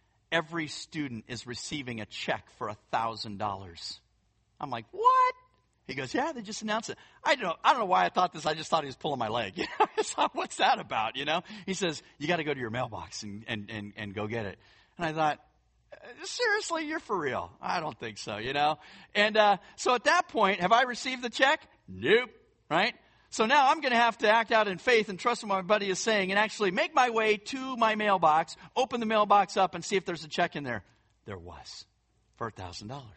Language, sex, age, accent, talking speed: English, male, 40-59, American, 235 wpm